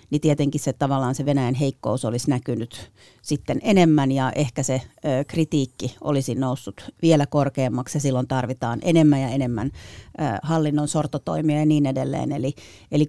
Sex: female